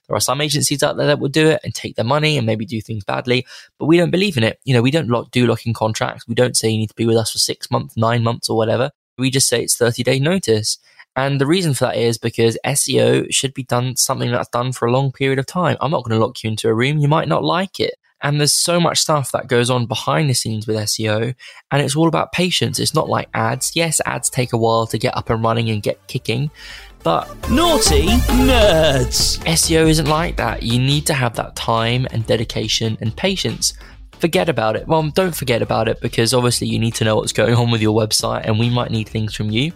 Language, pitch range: English, 115-140 Hz